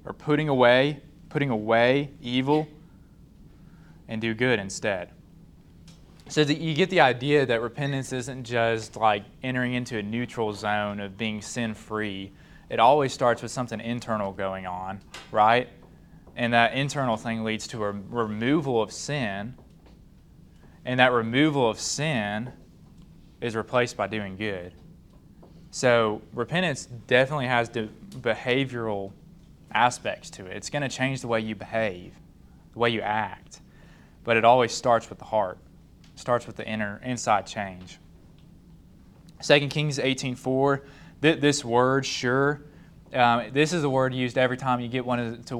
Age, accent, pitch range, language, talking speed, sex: 20-39, American, 110-135 Hz, English, 150 wpm, male